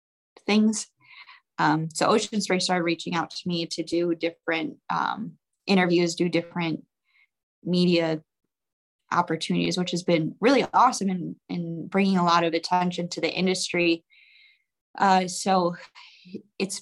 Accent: American